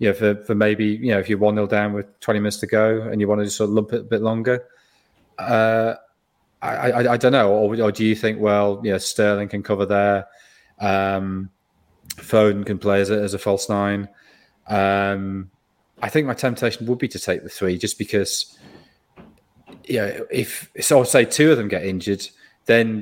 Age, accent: 30-49, British